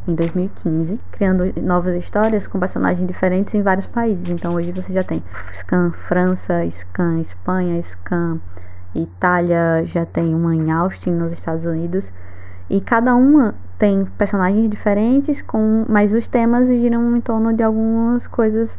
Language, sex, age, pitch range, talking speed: Portuguese, female, 20-39, 165-210 Hz, 145 wpm